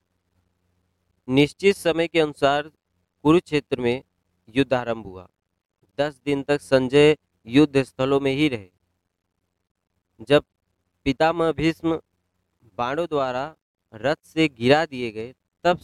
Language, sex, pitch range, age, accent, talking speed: Hindi, male, 90-130 Hz, 40-59, native, 105 wpm